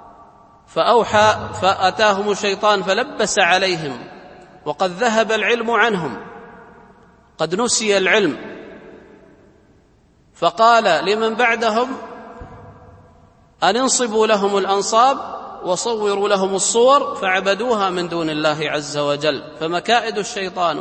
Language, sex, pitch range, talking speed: Arabic, male, 180-215 Hz, 85 wpm